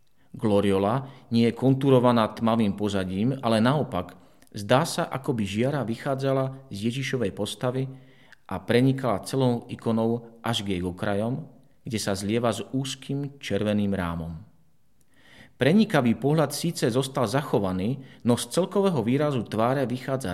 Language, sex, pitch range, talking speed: Slovak, male, 110-135 Hz, 125 wpm